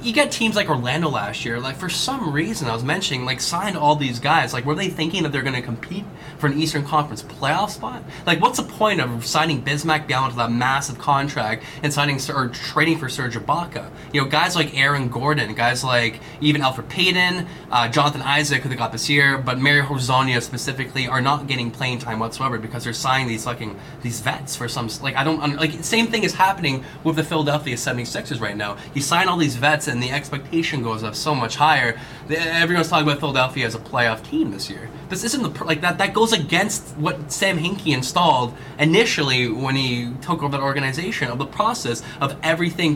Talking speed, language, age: 210 wpm, English, 20-39